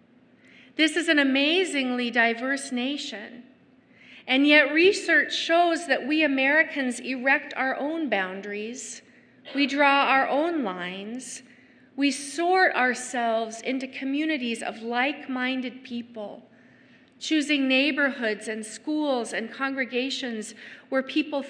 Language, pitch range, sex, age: English, 240-280 Hz, female, 40-59